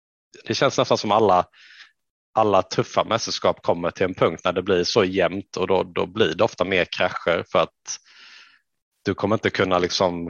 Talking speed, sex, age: 190 wpm, male, 30-49